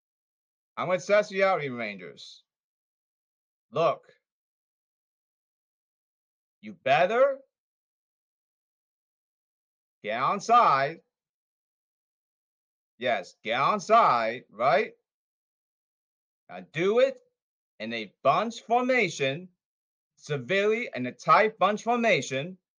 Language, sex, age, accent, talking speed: English, male, 40-59, American, 75 wpm